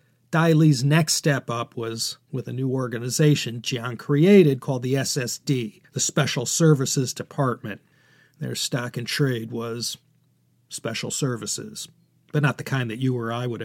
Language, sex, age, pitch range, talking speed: English, male, 40-59, 120-150 Hz, 155 wpm